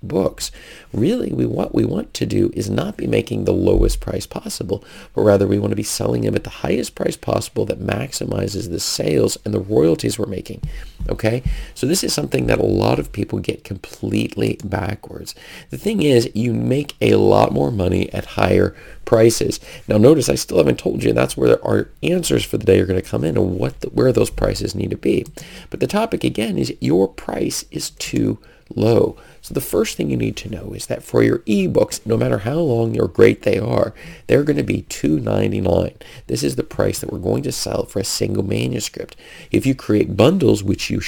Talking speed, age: 215 wpm, 40-59